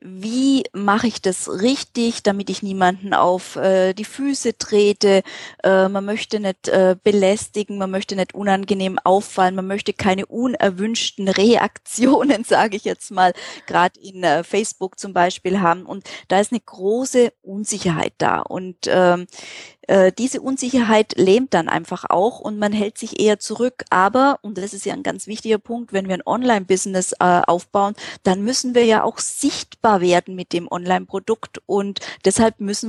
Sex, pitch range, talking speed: female, 190-230 Hz, 160 wpm